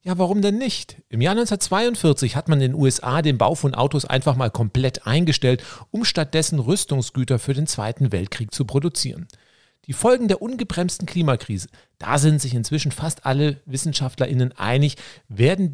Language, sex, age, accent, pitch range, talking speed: German, male, 40-59, German, 130-170 Hz, 165 wpm